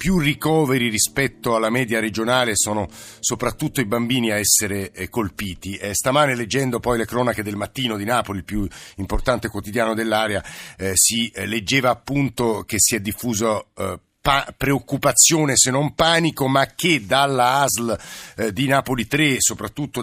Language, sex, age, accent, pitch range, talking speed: Italian, male, 50-69, native, 105-130 Hz, 150 wpm